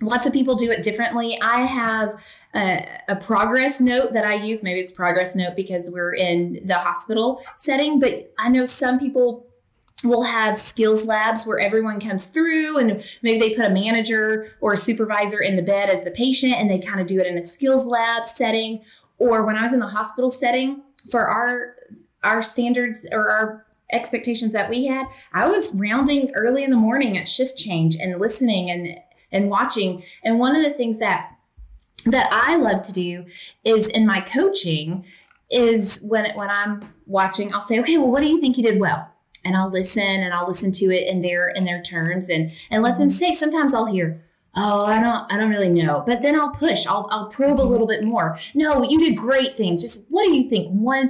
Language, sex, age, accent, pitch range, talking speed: English, female, 20-39, American, 195-250 Hz, 210 wpm